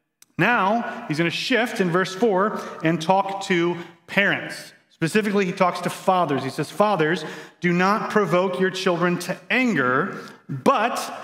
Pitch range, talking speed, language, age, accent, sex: 155-195 Hz, 150 wpm, English, 30-49, American, male